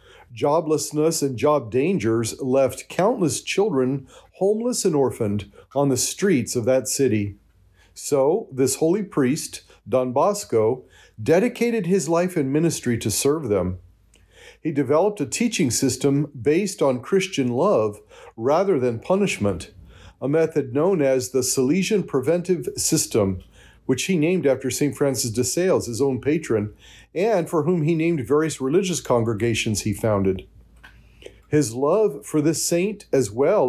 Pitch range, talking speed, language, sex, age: 115-160 Hz, 140 wpm, English, male, 50-69